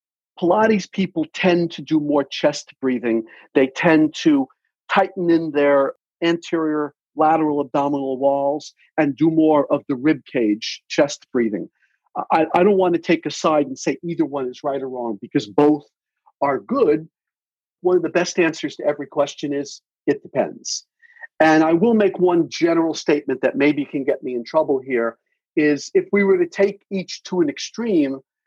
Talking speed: 175 wpm